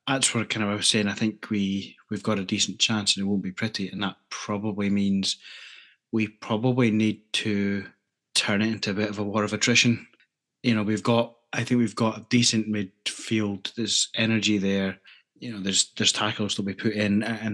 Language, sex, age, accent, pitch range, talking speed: English, male, 20-39, British, 100-115 Hz, 210 wpm